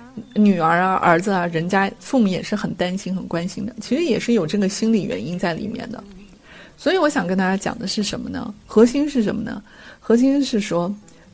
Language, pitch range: Chinese, 190-235 Hz